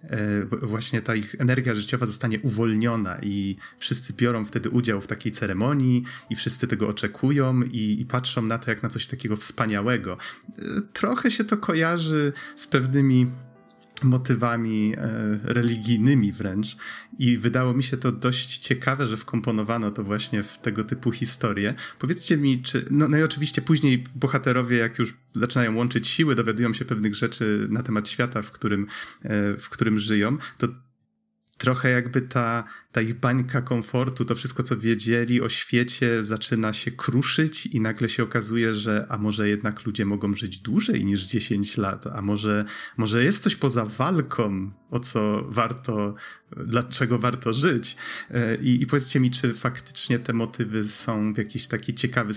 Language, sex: Polish, male